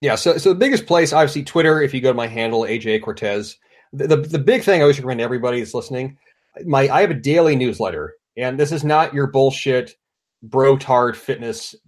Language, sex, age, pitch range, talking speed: English, male, 30-49, 115-145 Hz, 215 wpm